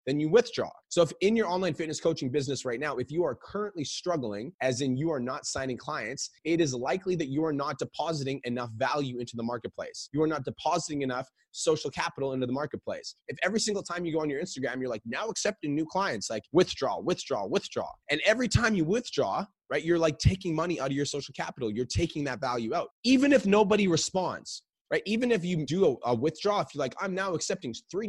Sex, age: male, 30-49